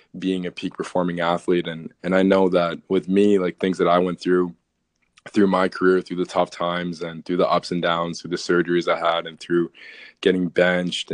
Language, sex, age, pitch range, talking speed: English, male, 20-39, 85-95 Hz, 215 wpm